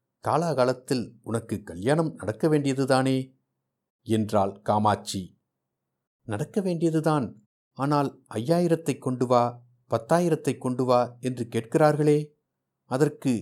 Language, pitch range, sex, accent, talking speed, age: Tamil, 115-140 Hz, male, native, 85 wpm, 60-79